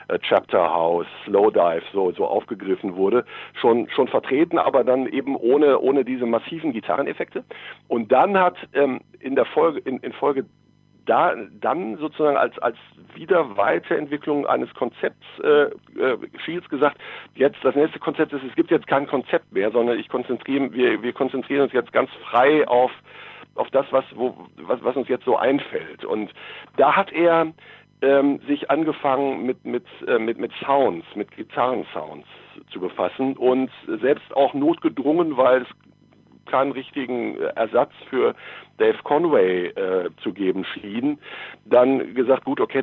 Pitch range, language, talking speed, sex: 125-165 Hz, German, 155 wpm, male